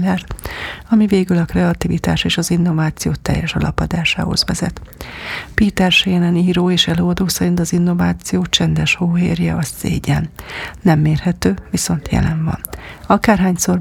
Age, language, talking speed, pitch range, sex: 40-59, Hungarian, 120 wpm, 155-175 Hz, female